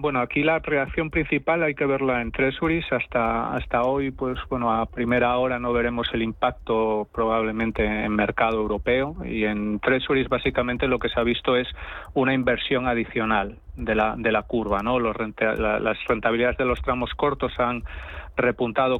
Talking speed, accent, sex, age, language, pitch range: 175 wpm, Spanish, male, 30-49, Spanish, 110-130 Hz